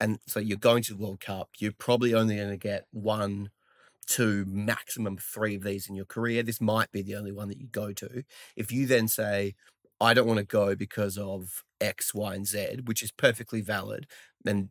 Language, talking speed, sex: English, 215 wpm, male